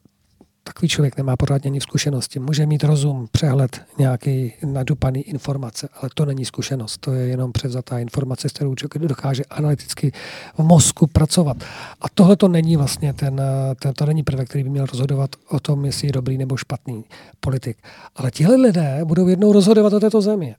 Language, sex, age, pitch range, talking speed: Czech, male, 40-59, 135-170 Hz, 165 wpm